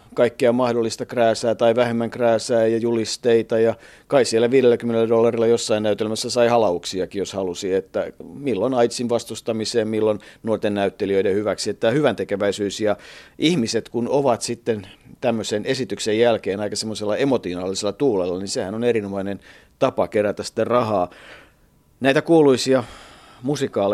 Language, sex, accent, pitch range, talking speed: Finnish, male, native, 100-115 Hz, 130 wpm